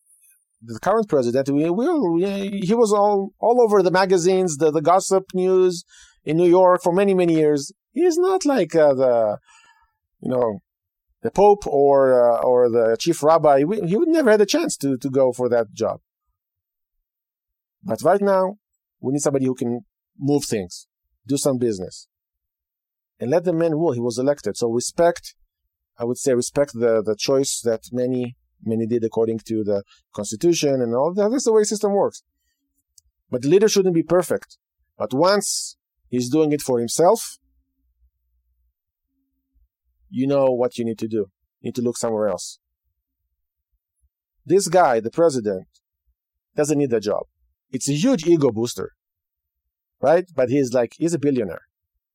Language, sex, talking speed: English, male, 170 wpm